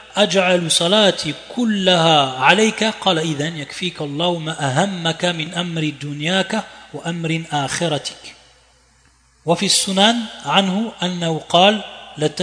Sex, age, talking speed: male, 30-49, 70 wpm